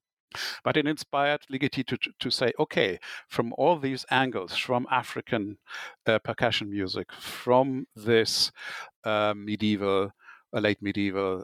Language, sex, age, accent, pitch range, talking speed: English, male, 60-79, German, 110-130 Hz, 125 wpm